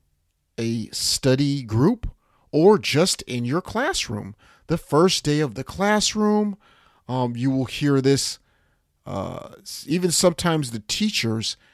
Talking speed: 125 wpm